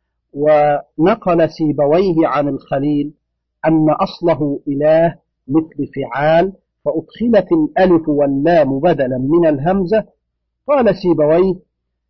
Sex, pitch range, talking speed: male, 140-190 Hz, 85 wpm